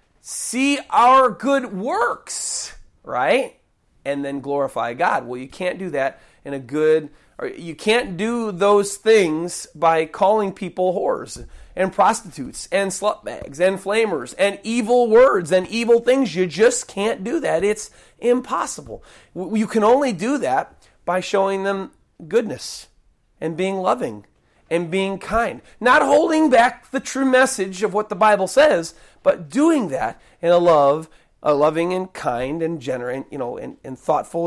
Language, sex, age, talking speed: English, male, 40-59, 155 wpm